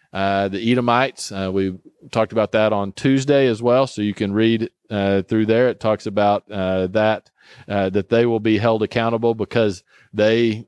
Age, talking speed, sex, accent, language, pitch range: 40-59, 185 wpm, male, American, English, 105-125 Hz